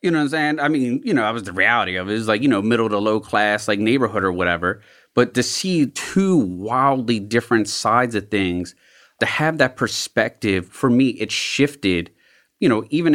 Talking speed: 220 wpm